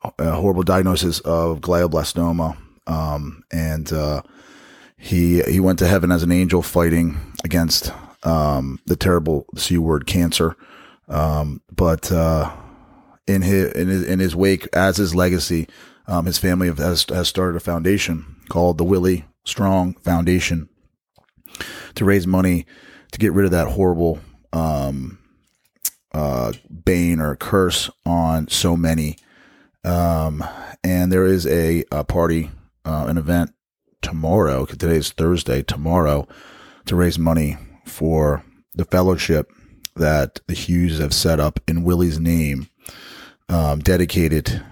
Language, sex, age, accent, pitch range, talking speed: English, male, 30-49, American, 80-90 Hz, 130 wpm